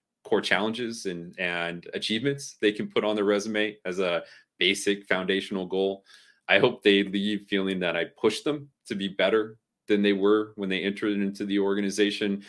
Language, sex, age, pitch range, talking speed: English, male, 30-49, 95-110 Hz, 180 wpm